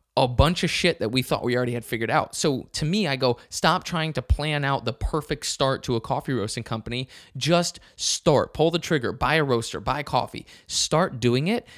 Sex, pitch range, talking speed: male, 120-165 Hz, 225 wpm